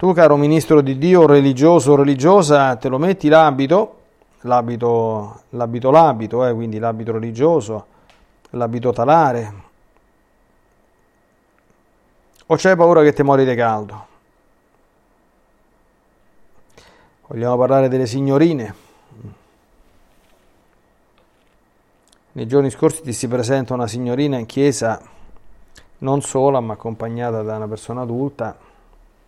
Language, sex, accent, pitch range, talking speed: Italian, male, native, 115-145 Hz, 105 wpm